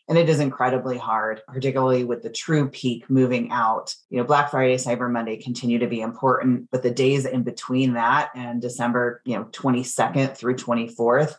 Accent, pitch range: American, 120-135 Hz